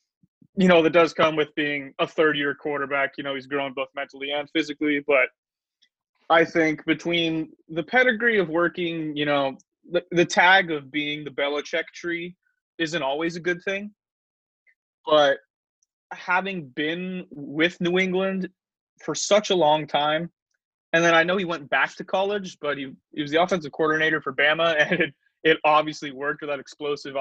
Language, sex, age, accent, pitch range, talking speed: English, male, 20-39, American, 145-185 Hz, 170 wpm